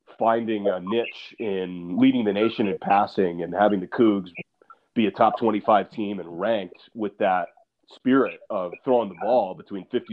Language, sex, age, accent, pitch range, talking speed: English, male, 30-49, American, 105-135 Hz, 170 wpm